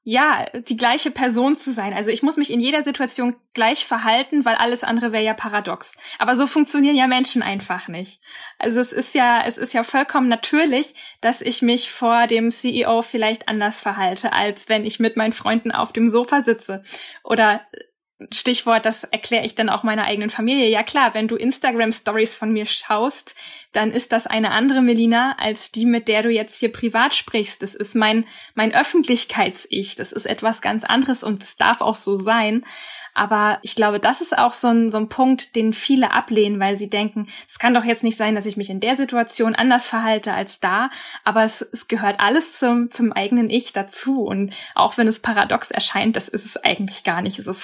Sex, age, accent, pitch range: female, 10-29, German, 215-245 Hz